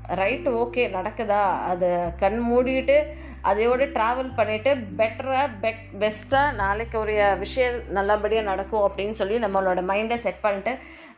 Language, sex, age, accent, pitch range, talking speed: Tamil, female, 20-39, native, 195-235 Hz, 125 wpm